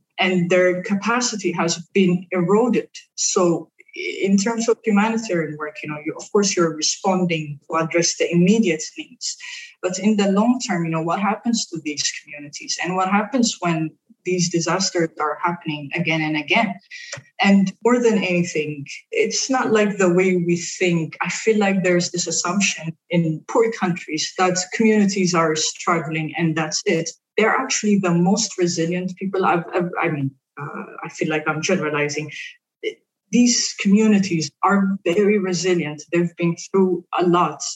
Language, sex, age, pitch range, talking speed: English, female, 20-39, 170-205 Hz, 155 wpm